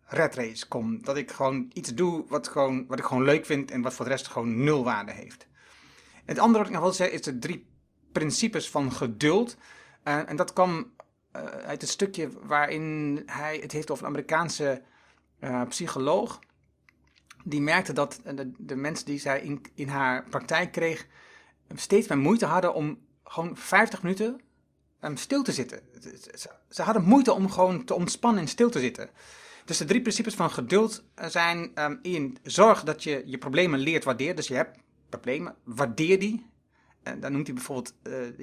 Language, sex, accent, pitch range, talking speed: Dutch, male, Dutch, 140-185 Hz, 180 wpm